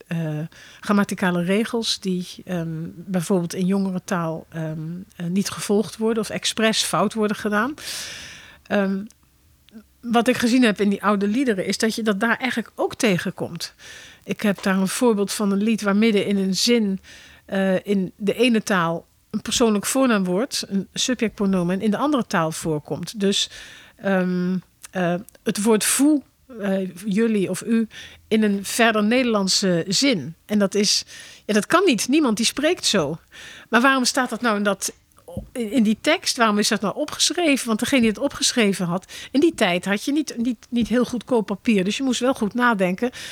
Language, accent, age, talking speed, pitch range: Dutch, Dutch, 50-69, 175 wpm, 190-240 Hz